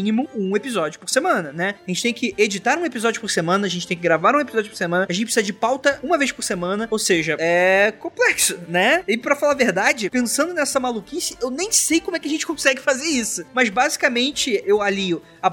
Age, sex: 20-39, male